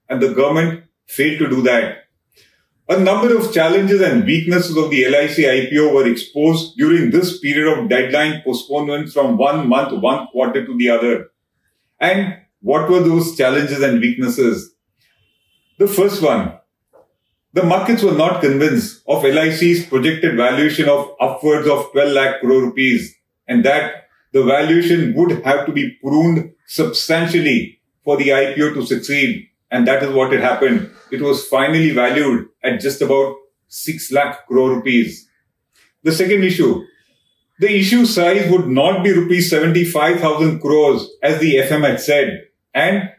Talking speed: 150 wpm